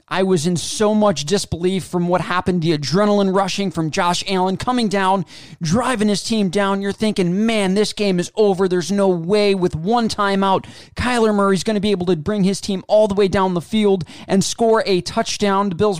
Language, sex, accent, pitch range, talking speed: English, male, American, 175-205 Hz, 210 wpm